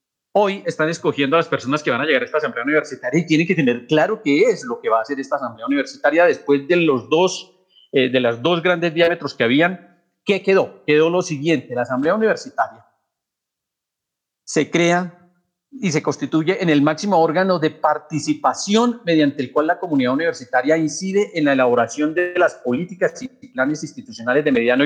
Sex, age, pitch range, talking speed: male, 40-59, 140-185 Hz, 190 wpm